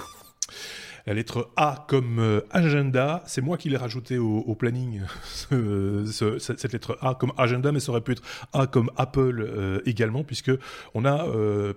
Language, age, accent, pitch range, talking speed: French, 30-49, French, 105-135 Hz, 175 wpm